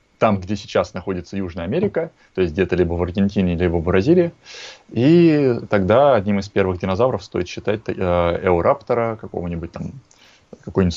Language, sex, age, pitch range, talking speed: Russian, male, 20-39, 95-115 Hz, 150 wpm